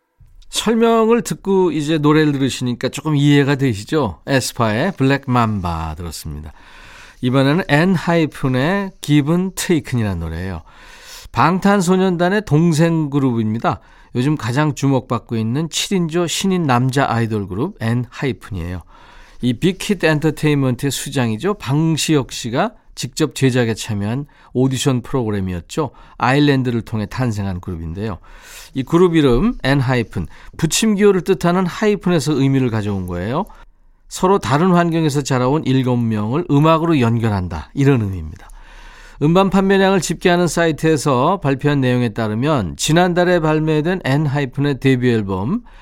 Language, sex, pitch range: Korean, male, 120-170 Hz